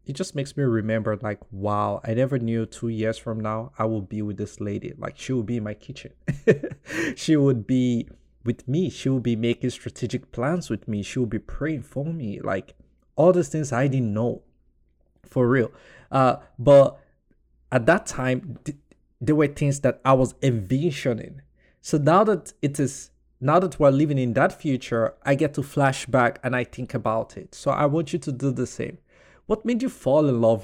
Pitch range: 110-140 Hz